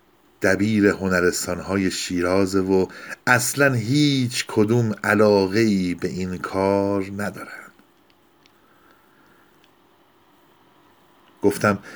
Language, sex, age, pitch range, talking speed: Persian, male, 50-69, 95-130 Hz, 75 wpm